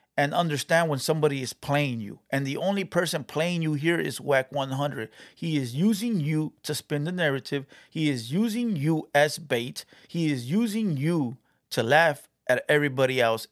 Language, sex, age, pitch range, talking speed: English, male, 30-49, 135-170 Hz, 180 wpm